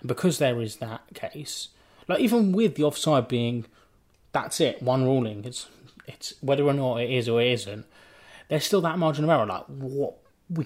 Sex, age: male, 20-39